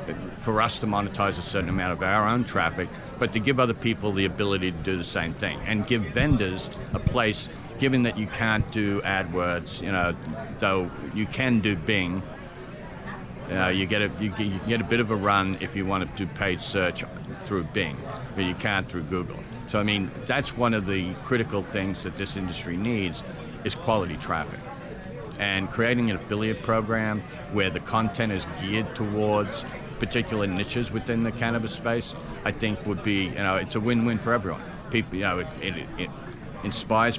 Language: English